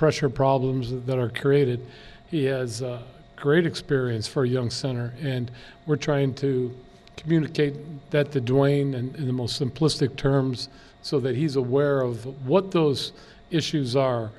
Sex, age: male, 50-69